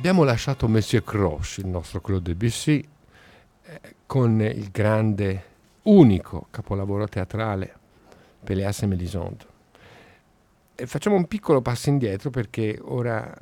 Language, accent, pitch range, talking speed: Italian, native, 100-125 Hz, 110 wpm